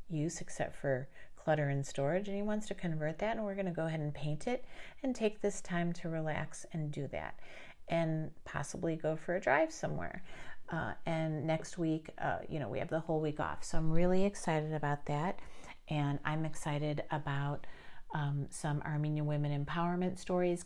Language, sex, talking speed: English, female, 190 wpm